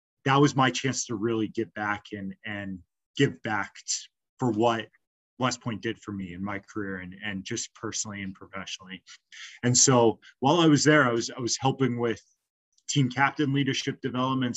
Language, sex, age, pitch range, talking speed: English, male, 20-39, 105-125 Hz, 180 wpm